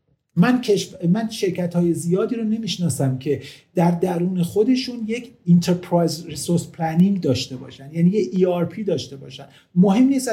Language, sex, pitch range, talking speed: Persian, male, 160-210 Hz, 135 wpm